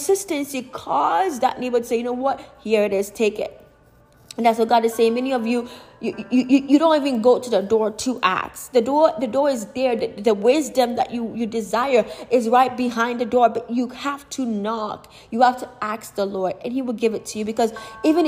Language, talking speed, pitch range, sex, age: English, 235 wpm, 220-255 Hz, female, 20-39